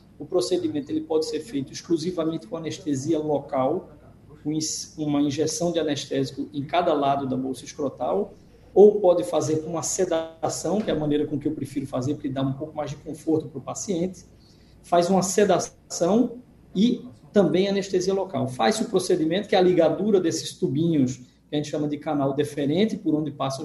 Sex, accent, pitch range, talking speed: male, Brazilian, 145-190 Hz, 185 wpm